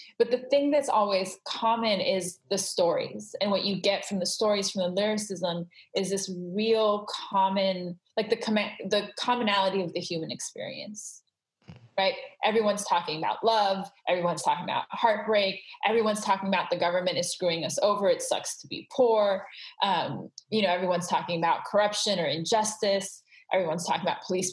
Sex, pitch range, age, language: female, 180-215 Hz, 20-39, English